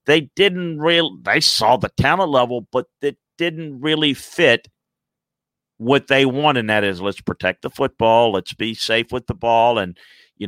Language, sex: English, male